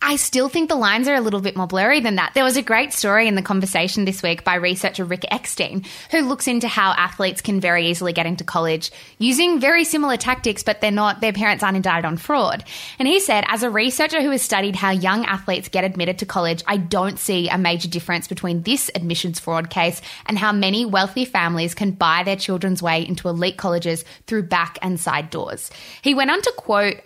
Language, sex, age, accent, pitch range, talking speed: English, female, 20-39, Australian, 175-225 Hz, 225 wpm